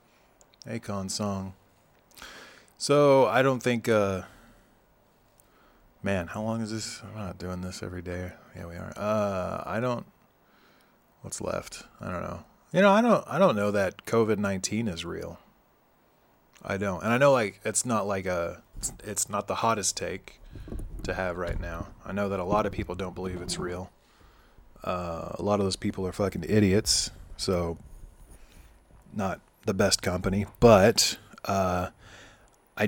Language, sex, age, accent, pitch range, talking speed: English, male, 20-39, American, 90-105 Hz, 160 wpm